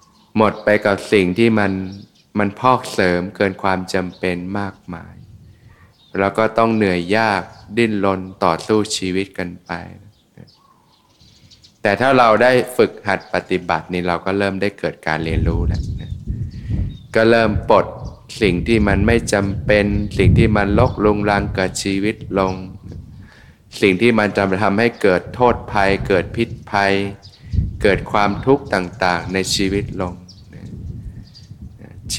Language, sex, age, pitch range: Thai, male, 20-39, 95-110 Hz